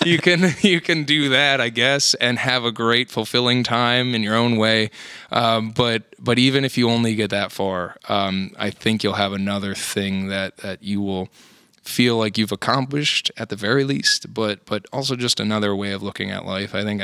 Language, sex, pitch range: English, male, 100-120 Hz